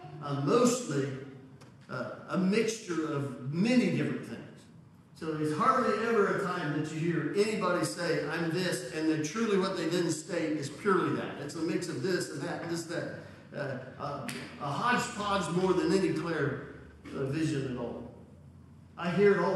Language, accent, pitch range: English, American, 170-230 Hz